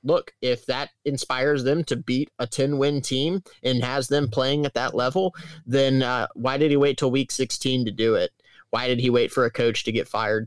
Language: English